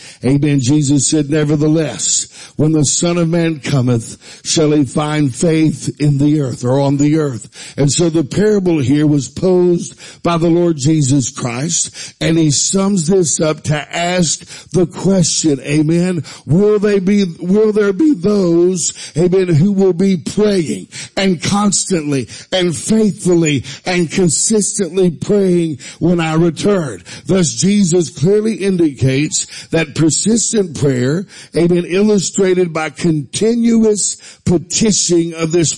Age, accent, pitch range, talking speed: 60-79, American, 145-185 Hz, 135 wpm